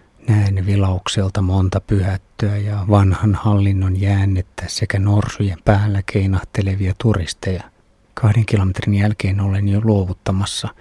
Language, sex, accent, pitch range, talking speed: Finnish, male, native, 95-110 Hz, 105 wpm